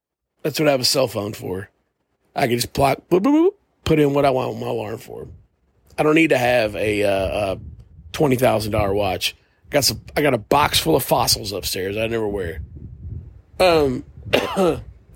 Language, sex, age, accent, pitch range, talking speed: English, male, 40-59, American, 100-160 Hz, 180 wpm